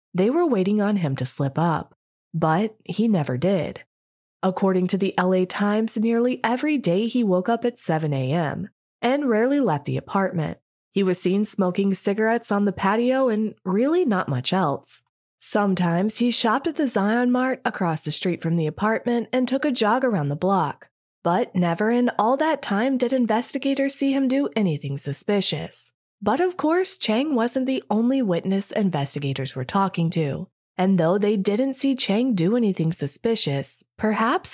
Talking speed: 170 wpm